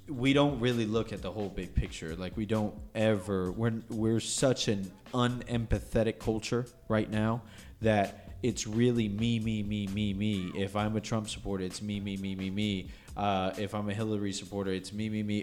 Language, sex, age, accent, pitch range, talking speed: English, male, 20-39, American, 105-130 Hz, 200 wpm